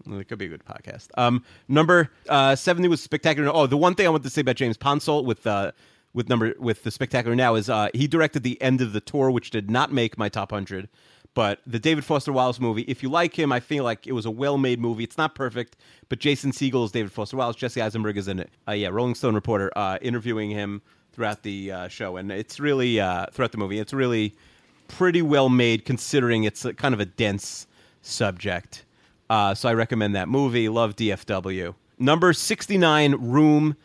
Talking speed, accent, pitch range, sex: 220 wpm, American, 110-140 Hz, male